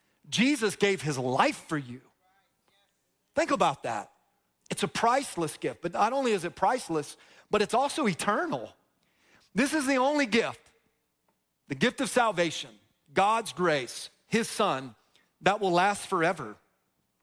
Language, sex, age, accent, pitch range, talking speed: English, male, 40-59, American, 155-210 Hz, 140 wpm